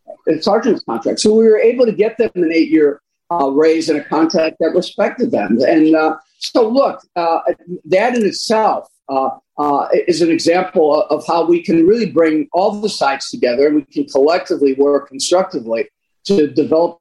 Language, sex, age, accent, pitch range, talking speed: English, male, 50-69, American, 150-215 Hz, 175 wpm